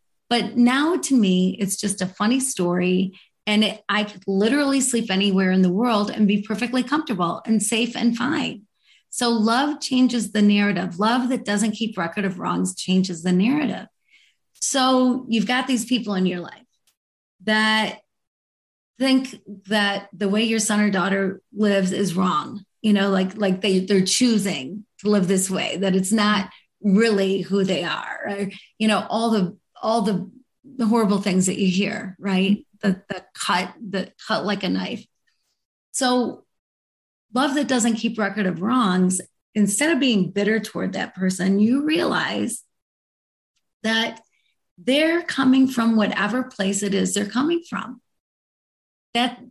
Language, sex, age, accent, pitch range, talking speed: English, female, 30-49, American, 195-250 Hz, 160 wpm